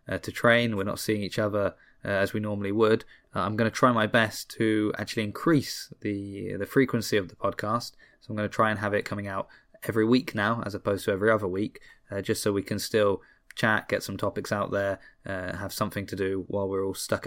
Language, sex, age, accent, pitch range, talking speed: English, male, 20-39, British, 100-115 Hz, 240 wpm